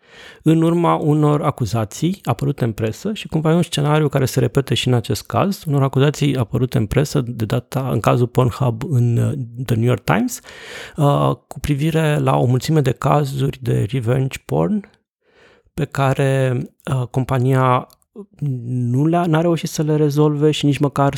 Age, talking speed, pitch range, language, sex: 30-49, 160 wpm, 115-145 Hz, Romanian, male